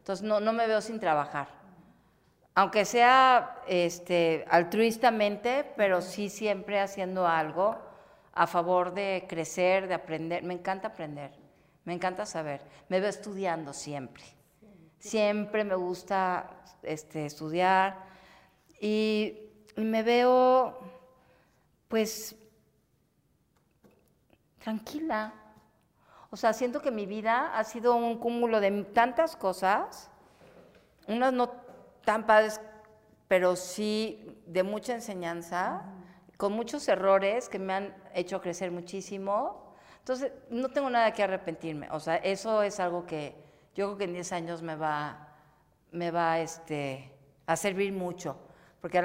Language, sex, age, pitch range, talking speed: Spanish, female, 40-59, 170-215 Hz, 120 wpm